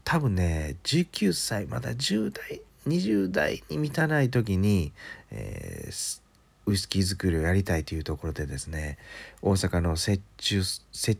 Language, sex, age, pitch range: Japanese, male, 40-59, 85-105 Hz